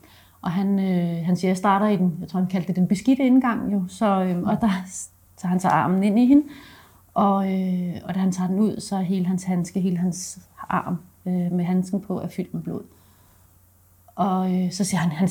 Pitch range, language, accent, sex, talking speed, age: 175-200 Hz, Danish, native, female, 235 wpm, 30-49